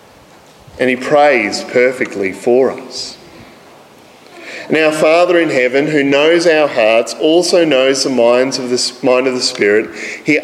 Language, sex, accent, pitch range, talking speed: English, male, Australian, 125-185 Hz, 150 wpm